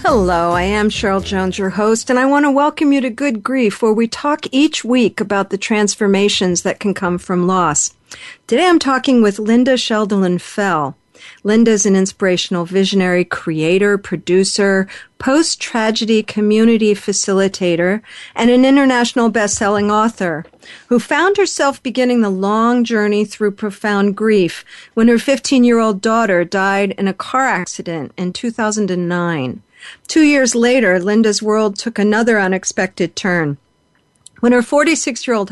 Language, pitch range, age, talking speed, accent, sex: English, 195-245 Hz, 50-69, 140 wpm, American, female